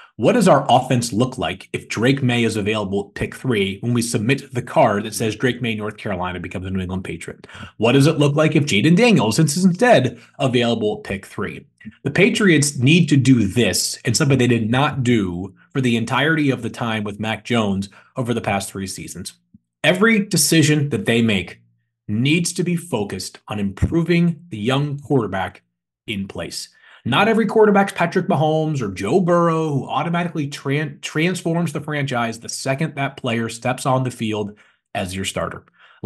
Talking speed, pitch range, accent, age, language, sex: 185 wpm, 115-165 Hz, American, 30-49, English, male